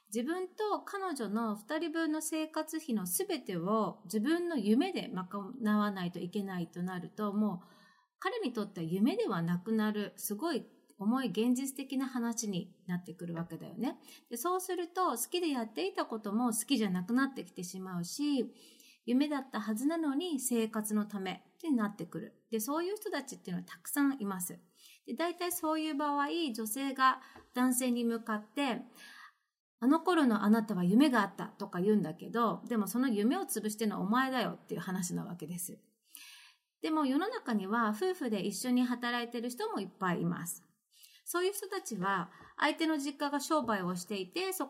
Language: Japanese